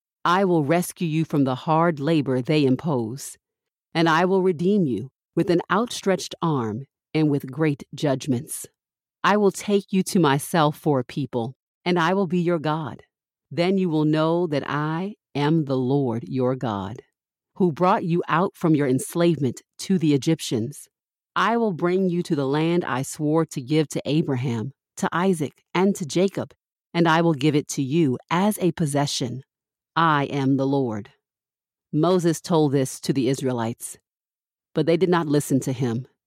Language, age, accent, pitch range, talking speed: English, 40-59, American, 135-175 Hz, 170 wpm